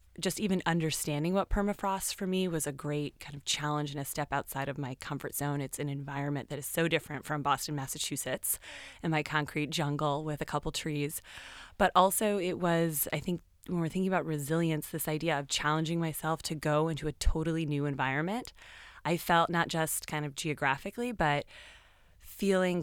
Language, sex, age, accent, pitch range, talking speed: English, female, 20-39, American, 145-165 Hz, 185 wpm